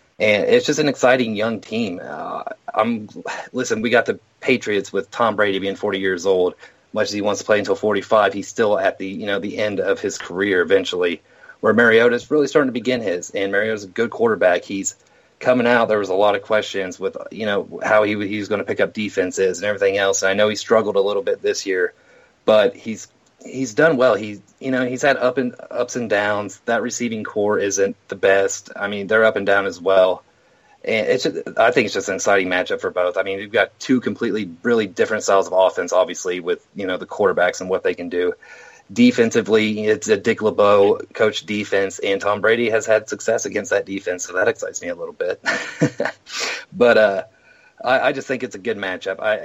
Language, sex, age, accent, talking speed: English, male, 30-49, American, 225 wpm